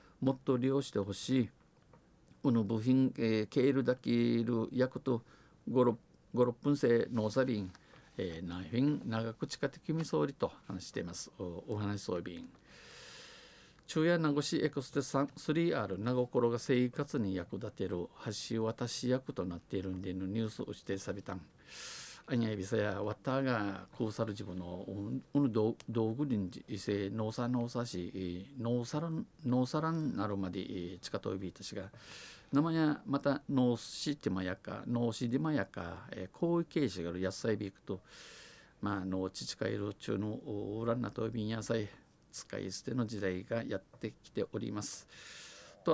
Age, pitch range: 50-69, 100-130 Hz